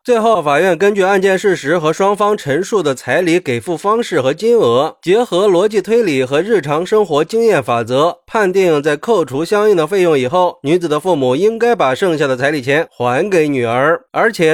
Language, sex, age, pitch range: Chinese, male, 30-49, 150-220 Hz